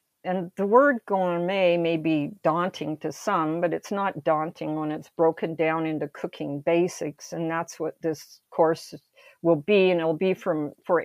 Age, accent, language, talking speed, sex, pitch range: 50-69, American, English, 175 wpm, female, 155-185 Hz